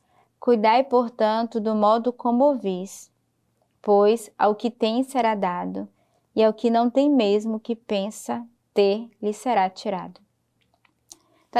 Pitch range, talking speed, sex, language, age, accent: 215-255 Hz, 130 wpm, female, Portuguese, 10-29, Brazilian